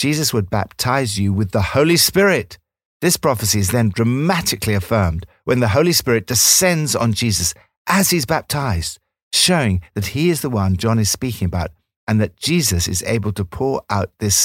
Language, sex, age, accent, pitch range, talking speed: English, male, 60-79, British, 95-130 Hz, 180 wpm